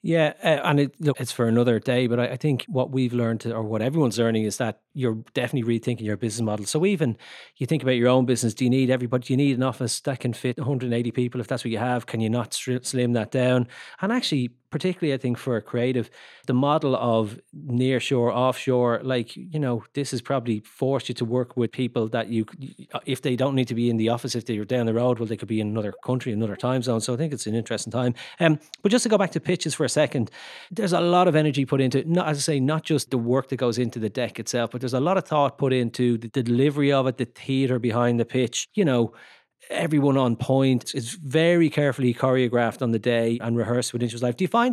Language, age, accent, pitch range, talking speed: English, 30-49, Irish, 120-140 Hz, 260 wpm